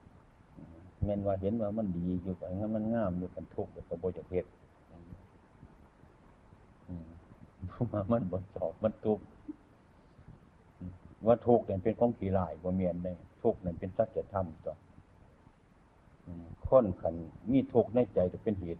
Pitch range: 90-110 Hz